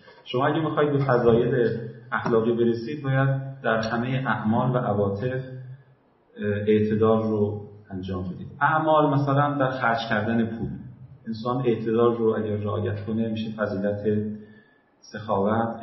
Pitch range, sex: 110-130 Hz, male